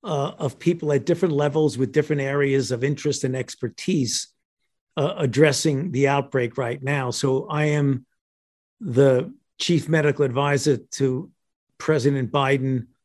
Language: English